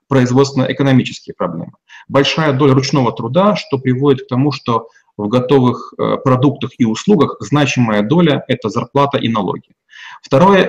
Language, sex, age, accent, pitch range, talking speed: Russian, male, 30-49, native, 115-140 Hz, 130 wpm